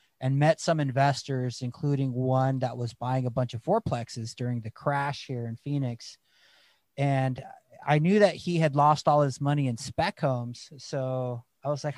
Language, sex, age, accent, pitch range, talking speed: English, male, 30-49, American, 130-165 Hz, 180 wpm